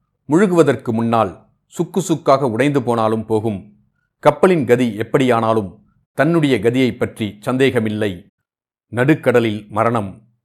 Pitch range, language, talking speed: 110-145 Hz, Tamil, 90 wpm